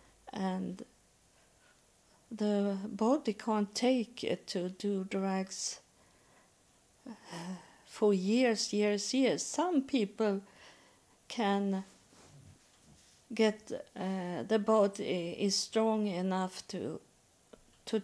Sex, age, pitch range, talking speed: female, 50-69, 195-225 Hz, 85 wpm